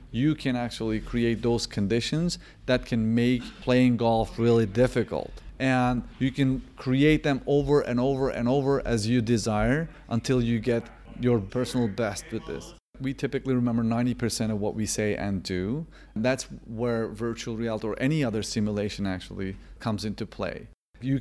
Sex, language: male, English